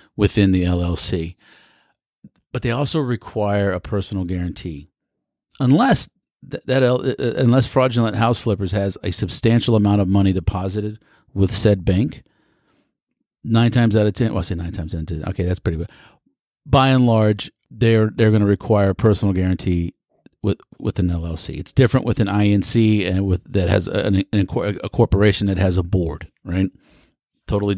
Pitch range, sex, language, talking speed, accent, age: 90-115 Hz, male, English, 170 wpm, American, 40-59